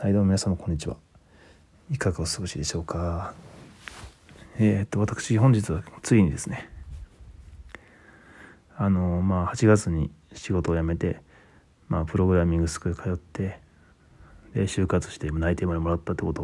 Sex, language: male, Japanese